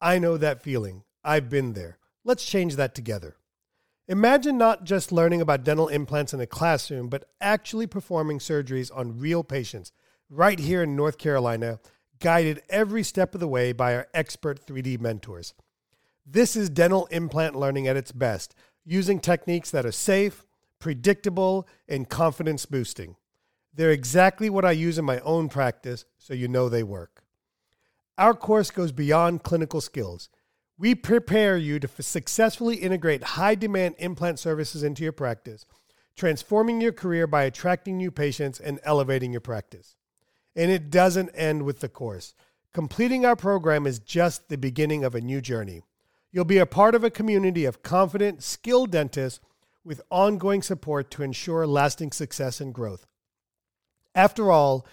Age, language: 40-59, English